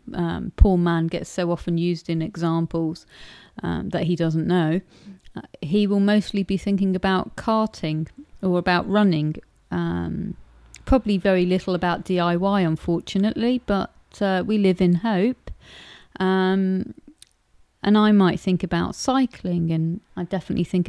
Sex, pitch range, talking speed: female, 165-195 Hz, 140 wpm